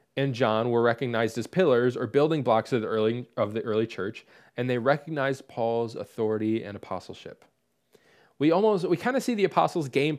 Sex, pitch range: male, 115-150 Hz